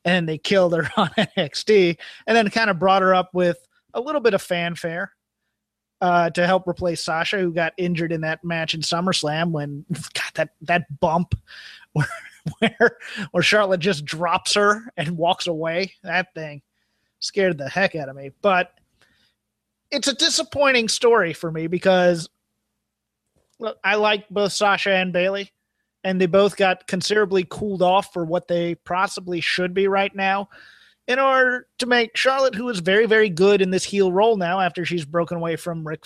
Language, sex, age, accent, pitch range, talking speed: English, male, 30-49, American, 170-205 Hz, 175 wpm